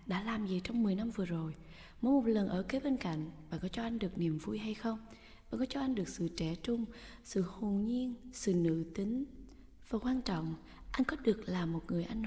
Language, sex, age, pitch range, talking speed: Vietnamese, female, 20-39, 165-230 Hz, 235 wpm